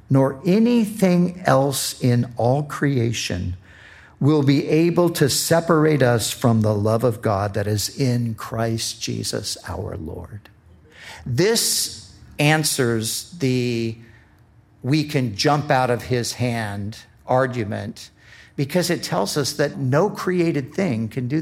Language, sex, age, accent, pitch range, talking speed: English, male, 50-69, American, 110-140 Hz, 125 wpm